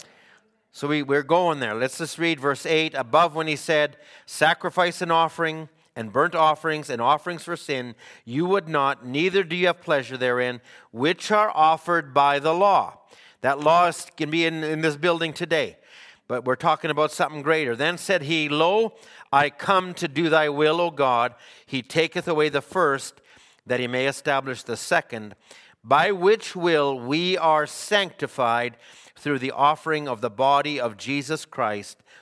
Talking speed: 170 wpm